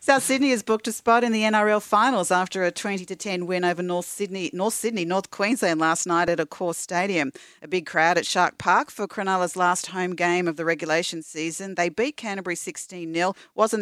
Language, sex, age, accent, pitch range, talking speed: English, female, 40-59, Australian, 160-195 Hz, 205 wpm